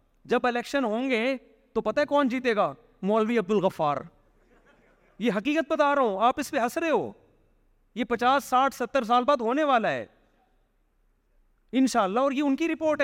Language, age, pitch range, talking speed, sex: Urdu, 30-49, 150-225 Hz, 180 wpm, male